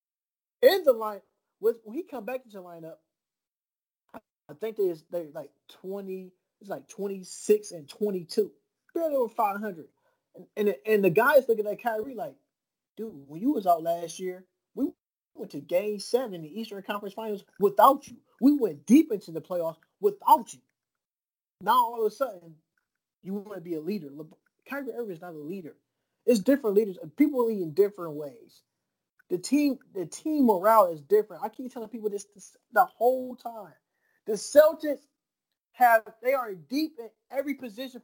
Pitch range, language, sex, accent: 180-260 Hz, English, male, American